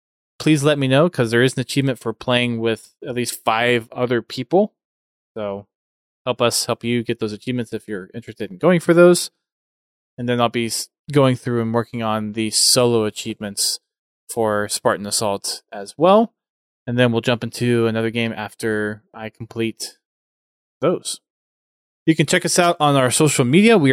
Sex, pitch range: male, 110-135 Hz